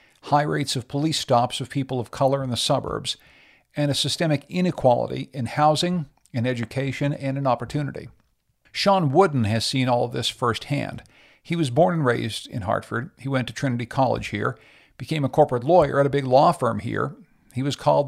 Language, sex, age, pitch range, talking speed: English, male, 50-69, 120-150 Hz, 190 wpm